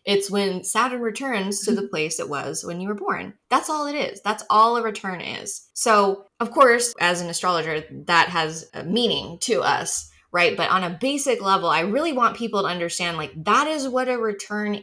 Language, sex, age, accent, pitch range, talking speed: English, female, 20-39, American, 160-210 Hz, 205 wpm